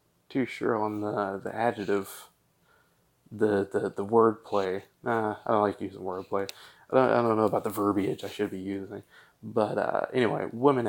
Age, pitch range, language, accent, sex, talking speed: 20-39, 100-115 Hz, English, American, male, 180 wpm